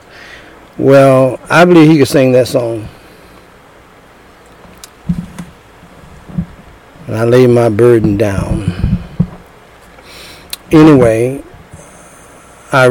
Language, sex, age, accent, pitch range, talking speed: English, male, 60-79, American, 120-145 Hz, 75 wpm